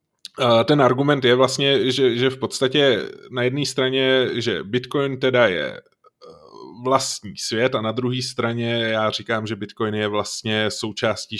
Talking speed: 145 wpm